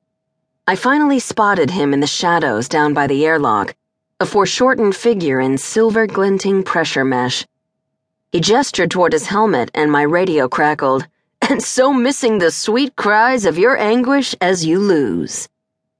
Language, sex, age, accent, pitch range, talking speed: English, female, 40-59, American, 150-230 Hz, 145 wpm